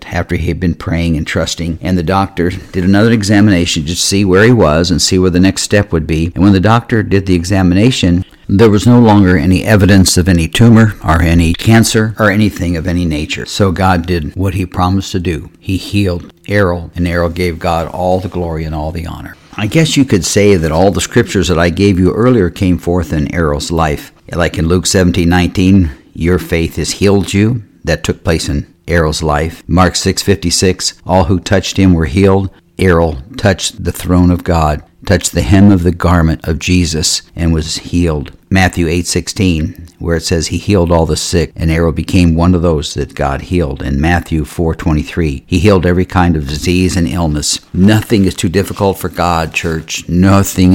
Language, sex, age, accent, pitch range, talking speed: English, male, 60-79, American, 85-95 Hz, 200 wpm